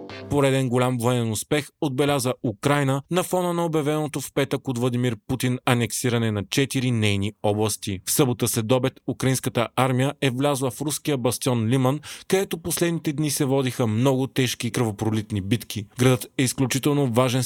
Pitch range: 120-140 Hz